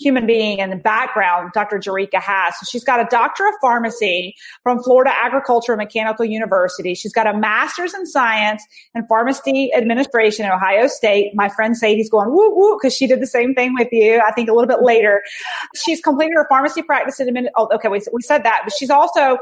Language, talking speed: English, 205 wpm